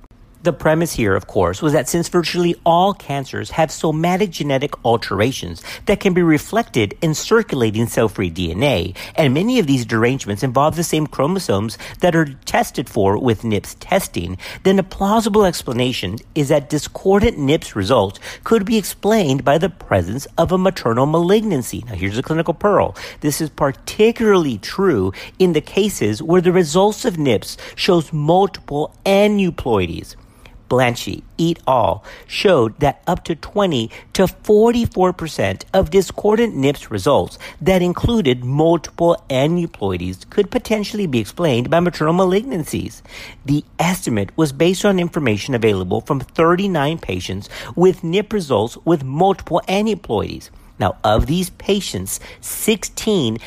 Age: 50-69